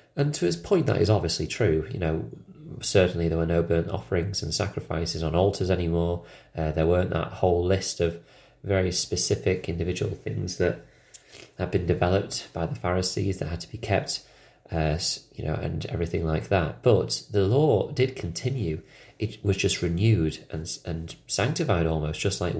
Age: 30-49